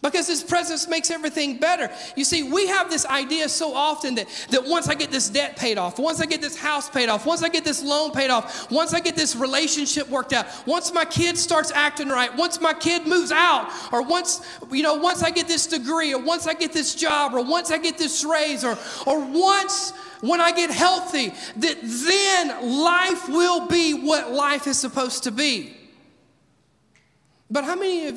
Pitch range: 260-335 Hz